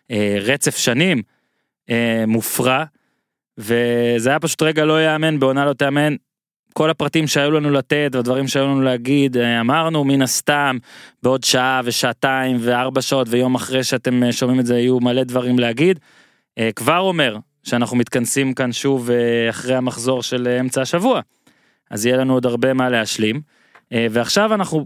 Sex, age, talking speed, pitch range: male, 20-39, 140 wpm, 125-165 Hz